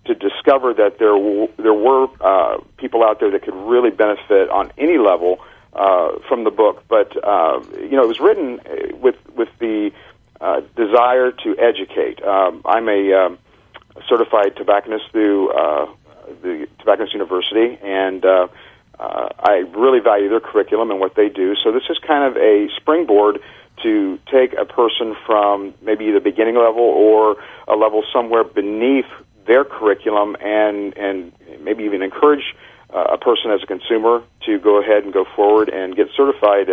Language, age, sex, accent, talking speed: English, 50-69, male, American, 170 wpm